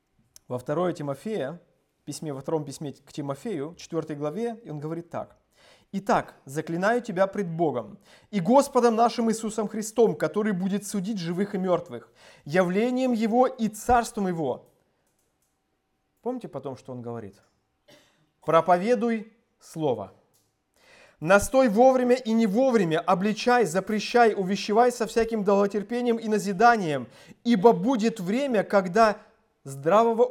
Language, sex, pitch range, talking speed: Russian, male, 150-230 Hz, 120 wpm